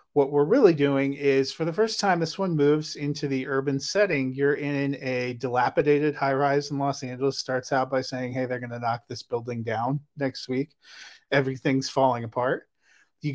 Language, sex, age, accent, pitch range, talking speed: English, male, 30-49, American, 135-165 Hz, 195 wpm